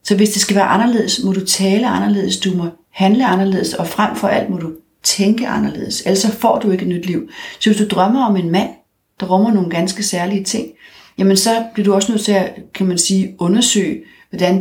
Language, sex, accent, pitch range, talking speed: Danish, female, native, 175-210 Hz, 225 wpm